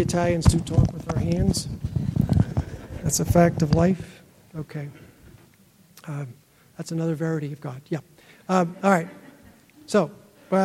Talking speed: 135 wpm